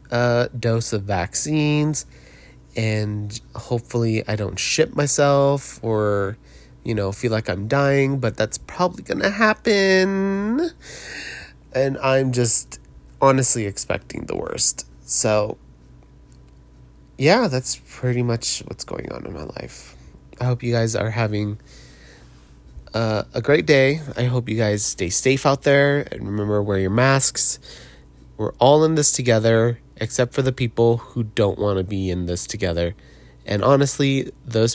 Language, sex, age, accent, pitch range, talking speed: English, male, 30-49, American, 95-135 Hz, 145 wpm